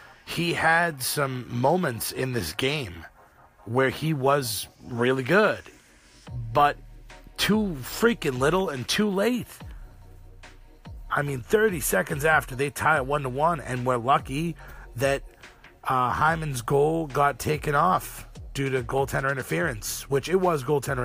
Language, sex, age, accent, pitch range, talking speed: English, male, 40-59, American, 120-150 Hz, 130 wpm